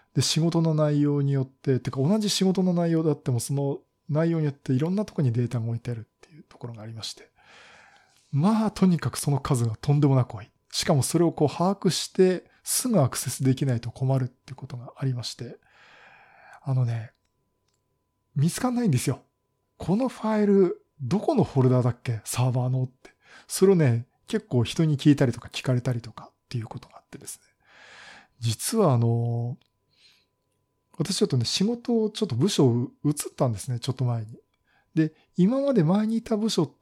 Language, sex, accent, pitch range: Japanese, male, native, 125-170 Hz